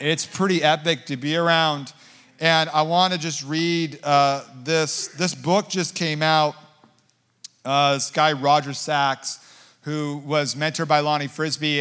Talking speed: 150 wpm